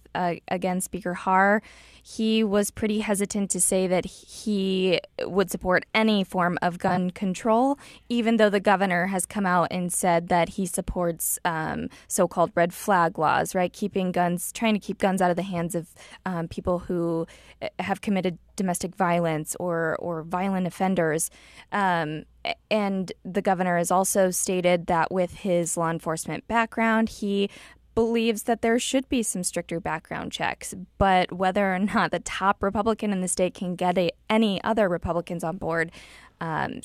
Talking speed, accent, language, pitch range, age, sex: 165 wpm, American, English, 175-210 Hz, 20-39, female